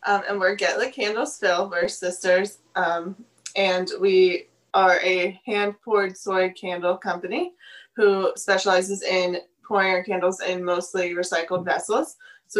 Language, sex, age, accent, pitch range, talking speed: English, female, 20-39, American, 180-215 Hz, 140 wpm